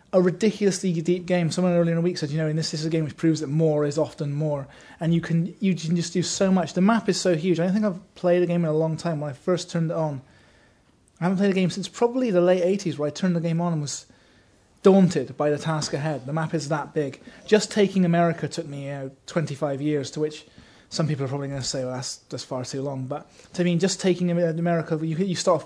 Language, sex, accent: English, male, British